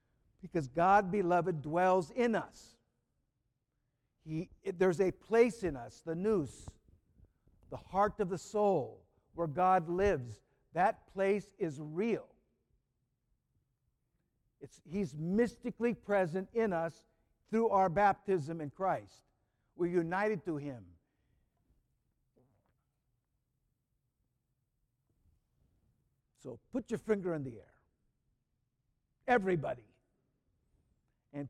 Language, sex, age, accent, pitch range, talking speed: English, male, 60-79, American, 130-205 Hz, 95 wpm